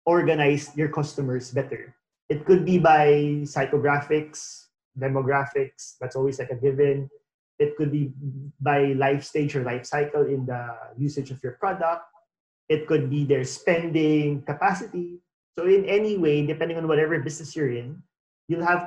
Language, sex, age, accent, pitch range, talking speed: English, male, 20-39, Filipino, 140-170 Hz, 155 wpm